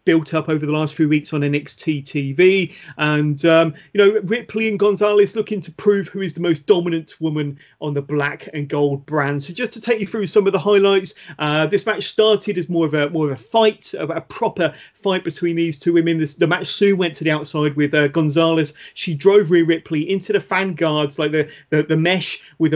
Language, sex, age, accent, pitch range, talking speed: English, male, 30-49, British, 150-200 Hz, 230 wpm